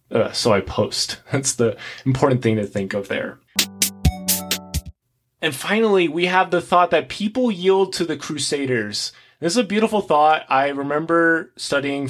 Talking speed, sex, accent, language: 160 wpm, male, American, English